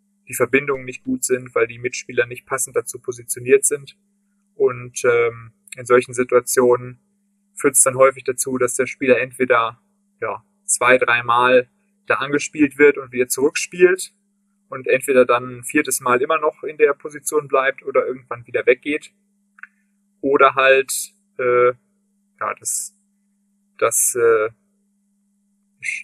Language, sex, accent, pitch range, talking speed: German, male, German, 130-205 Hz, 135 wpm